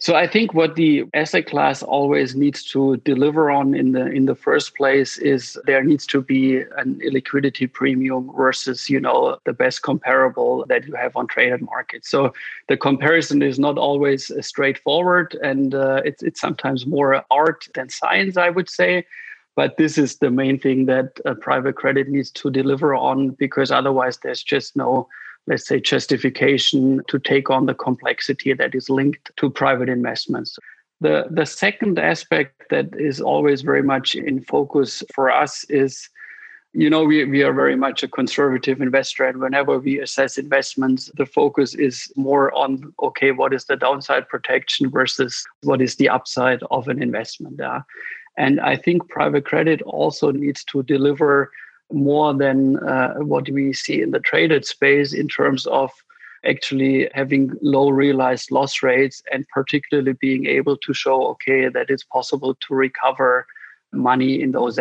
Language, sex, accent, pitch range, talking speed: English, male, German, 135-145 Hz, 170 wpm